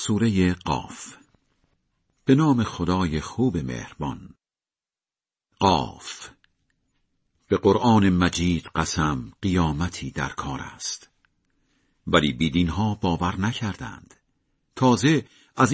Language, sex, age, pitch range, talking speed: Persian, male, 50-69, 85-115 Hz, 90 wpm